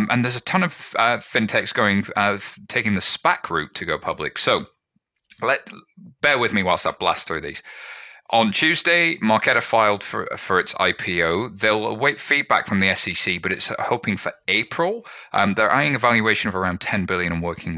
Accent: British